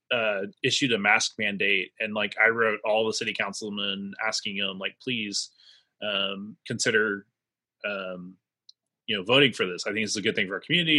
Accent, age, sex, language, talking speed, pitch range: American, 20-39, male, English, 185 wpm, 95-130 Hz